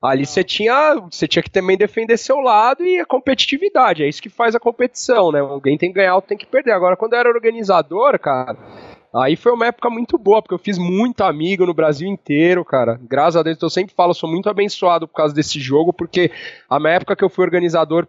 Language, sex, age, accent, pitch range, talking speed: Portuguese, male, 20-39, Brazilian, 160-205 Hz, 230 wpm